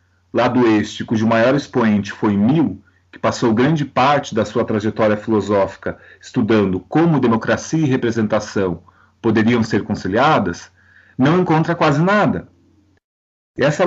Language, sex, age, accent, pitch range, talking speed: Portuguese, male, 40-59, Brazilian, 110-155 Hz, 120 wpm